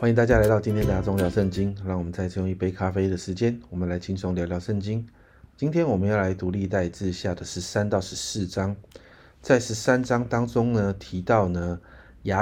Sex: male